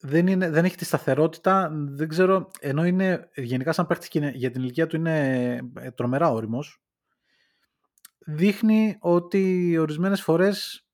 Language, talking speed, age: Greek, 135 wpm, 20-39